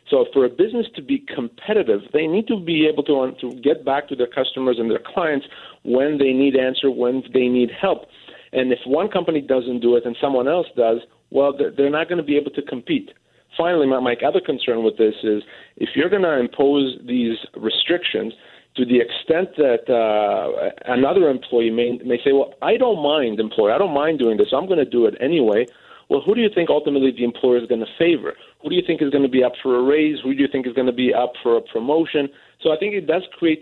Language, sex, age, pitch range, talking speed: English, male, 40-59, 125-155 Hz, 235 wpm